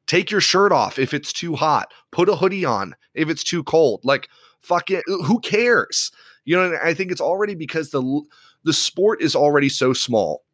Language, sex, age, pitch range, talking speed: English, male, 30-49, 125-160 Hz, 200 wpm